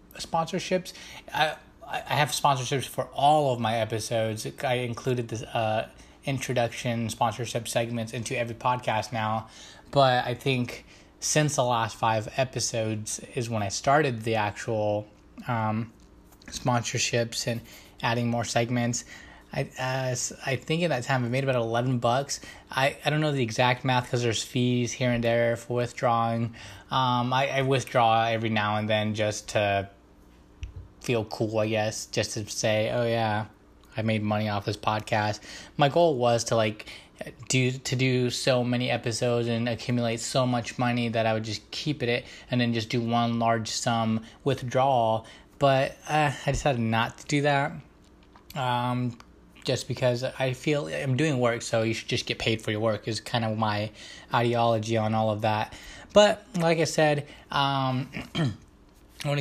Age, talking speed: 20-39, 165 wpm